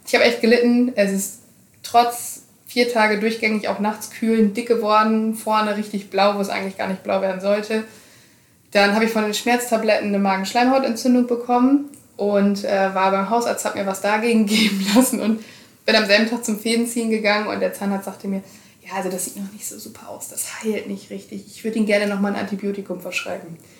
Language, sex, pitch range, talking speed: German, female, 195-235 Hz, 205 wpm